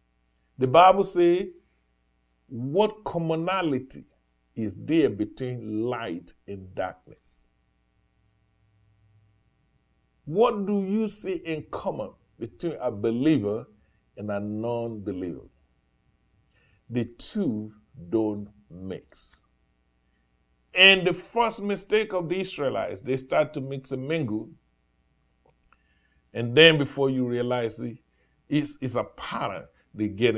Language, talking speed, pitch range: English, 105 wpm, 105-155 Hz